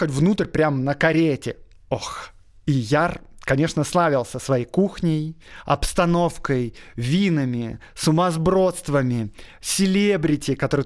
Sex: male